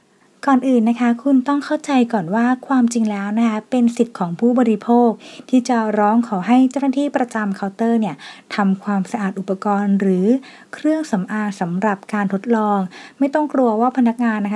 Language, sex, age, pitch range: Thai, female, 20-39, 205-250 Hz